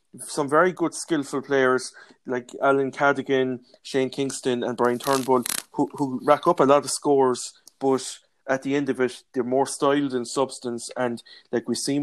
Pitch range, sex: 125-135 Hz, male